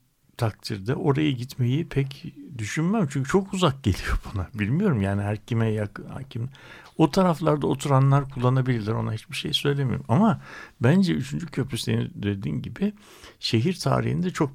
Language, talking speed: Turkish, 130 wpm